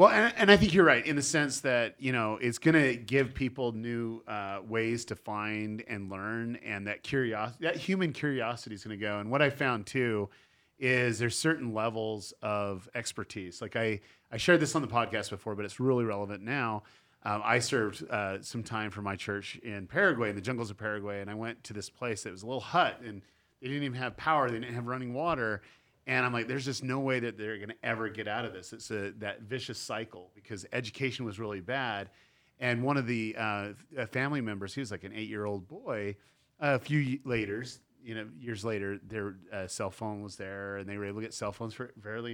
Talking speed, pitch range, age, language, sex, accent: 225 wpm, 105-125 Hz, 40-59, English, male, American